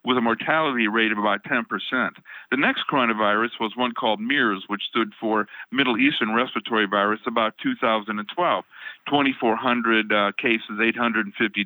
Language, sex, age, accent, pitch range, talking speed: English, male, 50-69, American, 110-130 Hz, 140 wpm